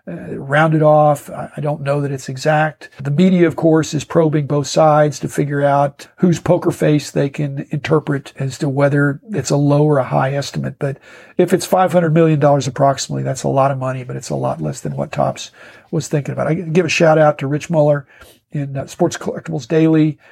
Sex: male